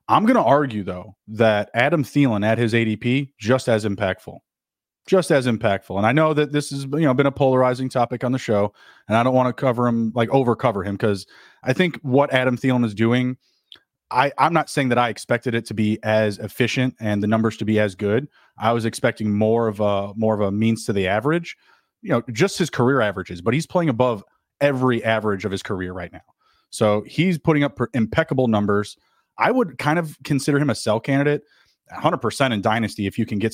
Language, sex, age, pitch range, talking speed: English, male, 30-49, 105-135 Hz, 210 wpm